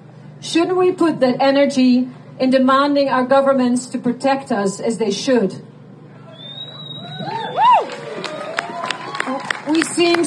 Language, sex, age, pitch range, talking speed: Dutch, female, 40-59, 240-285 Hz, 100 wpm